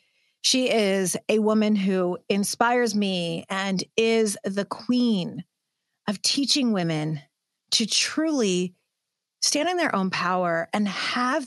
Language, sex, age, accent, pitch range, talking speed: English, female, 40-59, American, 175-230 Hz, 120 wpm